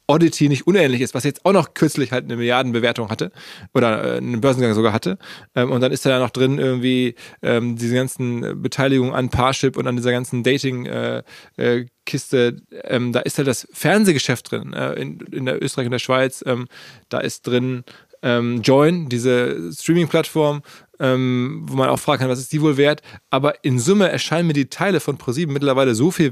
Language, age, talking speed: German, 20-39, 175 wpm